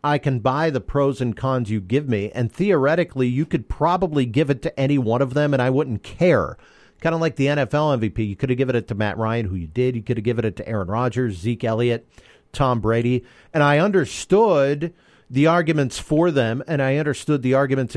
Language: English